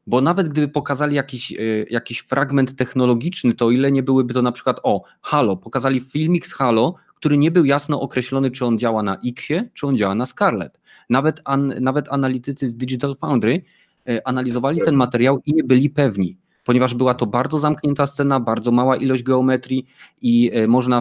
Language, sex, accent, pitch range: Polish, male, native, 115-140 Hz